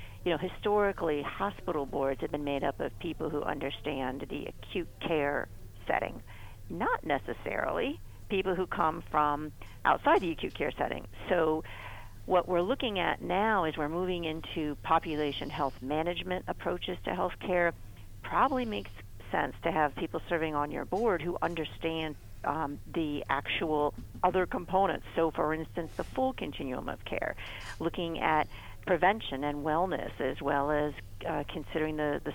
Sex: female